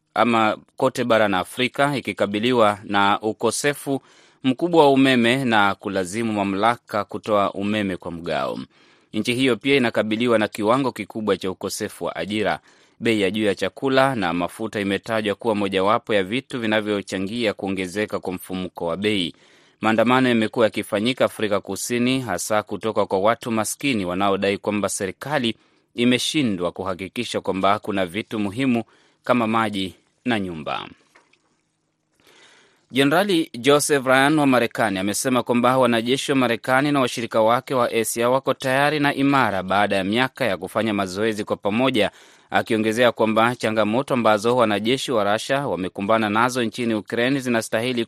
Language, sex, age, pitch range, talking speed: Swahili, male, 30-49, 100-125 Hz, 135 wpm